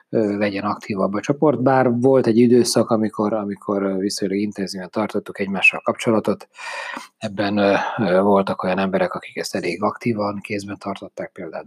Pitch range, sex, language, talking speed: 100-120 Hz, male, Hungarian, 140 wpm